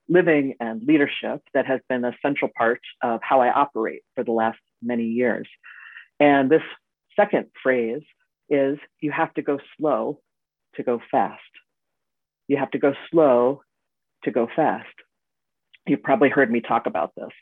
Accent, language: American, English